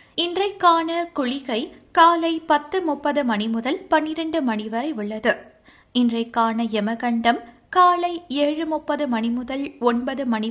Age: 20-39